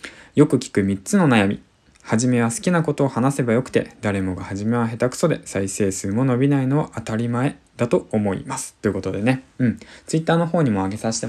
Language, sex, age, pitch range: Japanese, male, 20-39, 100-145 Hz